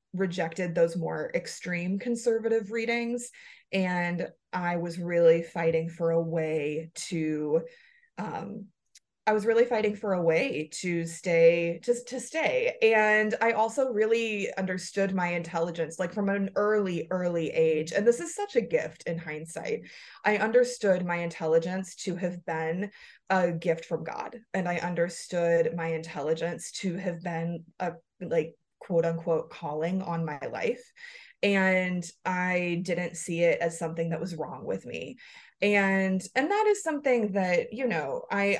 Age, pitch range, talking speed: 20-39, 170-235 Hz, 150 wpm